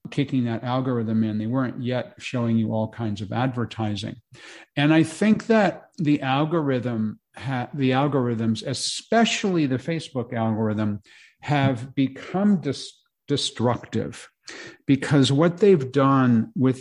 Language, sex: English, male